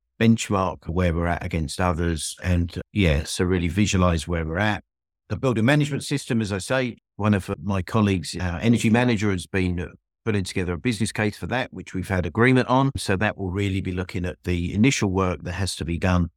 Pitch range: 85-105 Hz